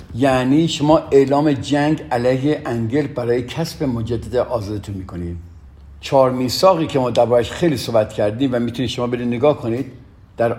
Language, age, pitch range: Persian, 50-69, 110-145 Hz